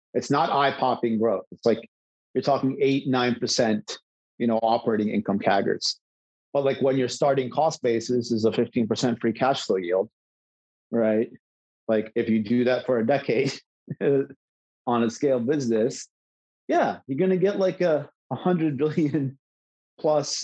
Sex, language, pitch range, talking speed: male, English, 115-140 Hz, 160 wpm